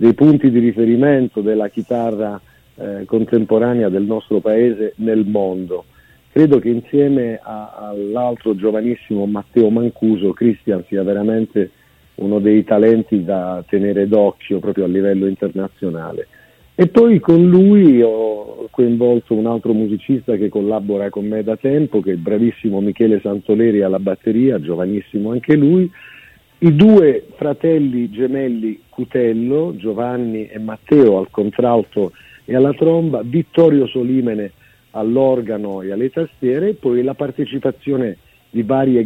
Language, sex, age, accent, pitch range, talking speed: Italian, male, 50-69, native, 105-125 Hz, 130 wpm